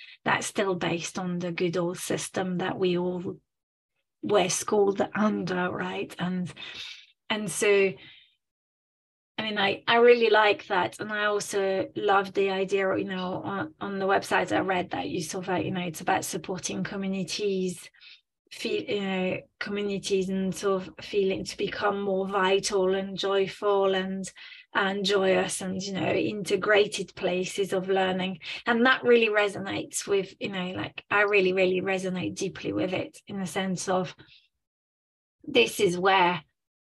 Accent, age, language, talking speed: British, 30-49, English, 155 wpm